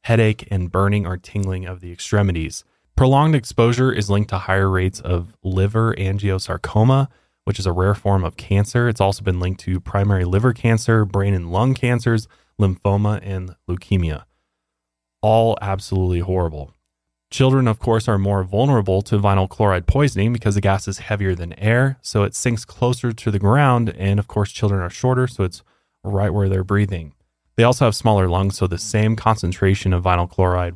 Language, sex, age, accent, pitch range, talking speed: English, male, 20-39, American, 90-115 Hz, 180 wpm